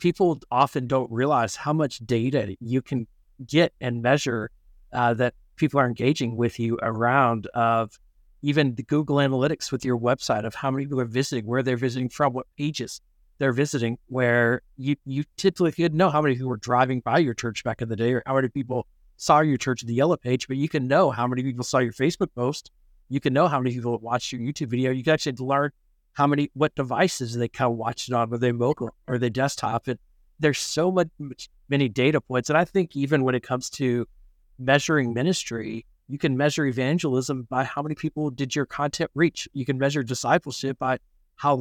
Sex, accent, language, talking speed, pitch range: male, American, English, 215 wpm, 125-145 Hz